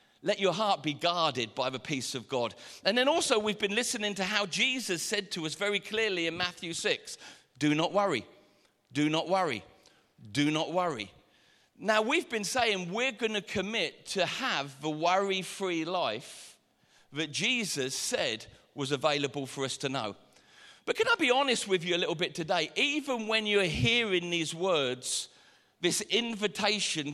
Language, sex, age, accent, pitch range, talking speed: English, male, 40-59, British, 160-225 Hz, 170 wpm